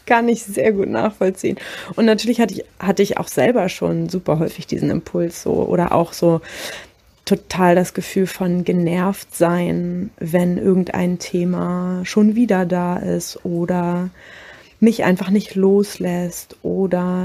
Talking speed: 145 wpm